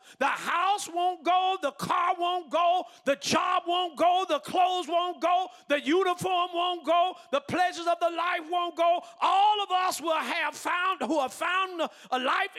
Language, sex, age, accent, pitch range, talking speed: English, male, 40-59, American, 280-355 Hz, 180 wpm